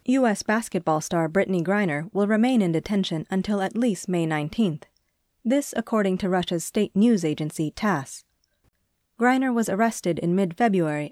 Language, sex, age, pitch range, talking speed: English, female, 30-49, 160-215 Hz, 145 wpm